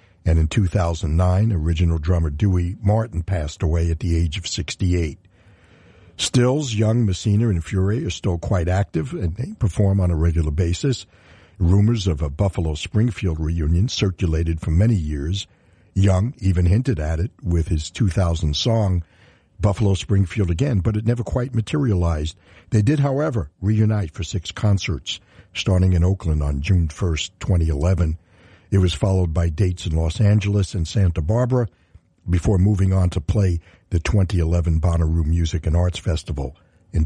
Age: 60-79